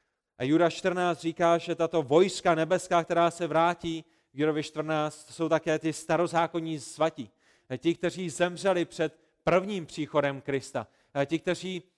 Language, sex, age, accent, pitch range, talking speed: Czech, male, 40-59, native, 150-180 Hz, 140 wpm